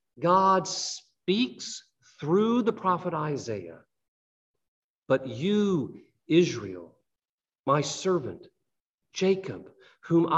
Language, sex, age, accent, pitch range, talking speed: English, male, 50-69, American, 130-185 Hz, 75 wpm